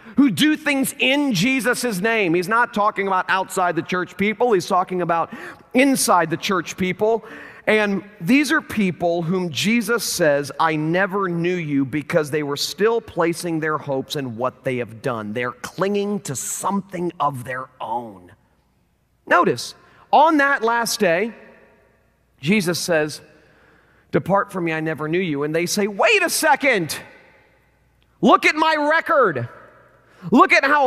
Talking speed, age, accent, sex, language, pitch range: 150 wpm, 40-59, American, male, English, 180-275 Hz